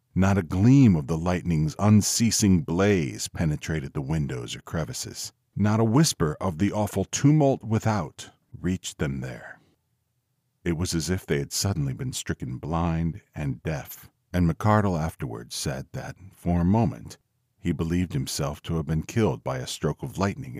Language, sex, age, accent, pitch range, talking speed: English, male, 50-69, American, 90-125 Hz, 165 wpm